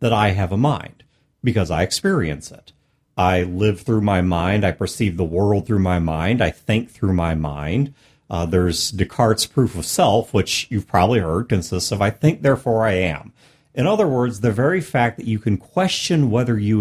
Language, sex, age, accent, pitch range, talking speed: English, male, 40-59, American, 100-150 Hz, 195 wpm